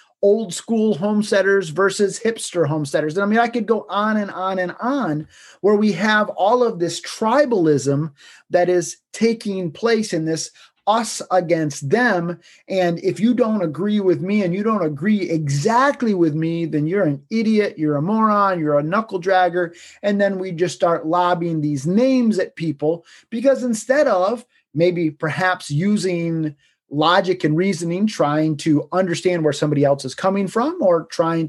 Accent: American